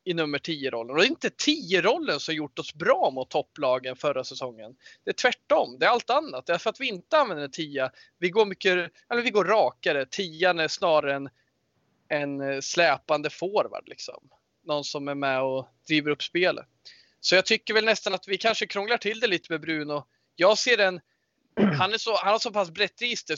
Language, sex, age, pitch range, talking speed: Swedish, male, 20-39, 145-195 Hz, 210 wpm